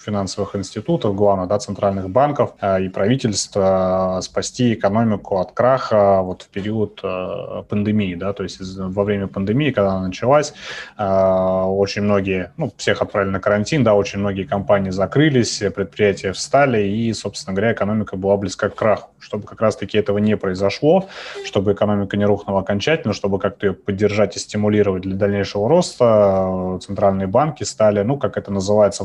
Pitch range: 95-110 Hz